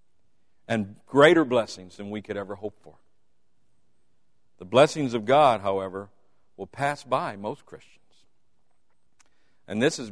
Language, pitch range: English, 95-125 Hz